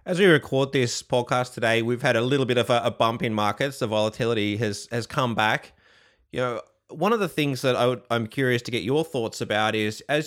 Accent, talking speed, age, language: Australian, 240 wpm, 30-49, English